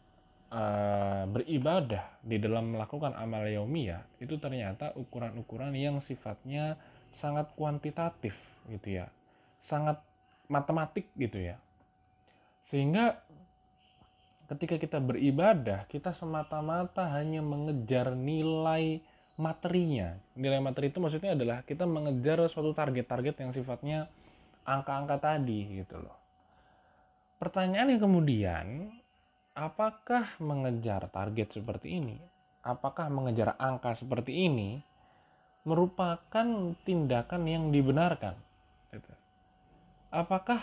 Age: 20-39